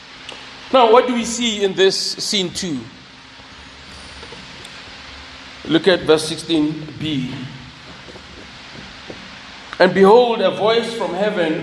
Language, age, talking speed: English, 40-59, 100 wpm